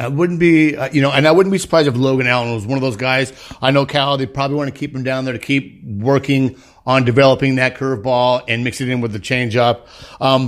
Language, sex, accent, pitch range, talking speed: English, male, American, 120-150 Hz, 265 wpm